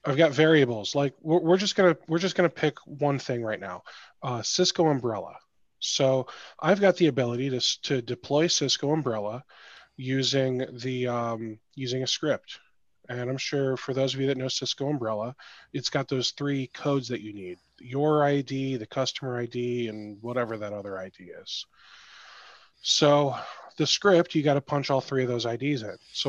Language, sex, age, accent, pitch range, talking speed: English, male, 20-39, American, 120-145 Hz, 180 wpm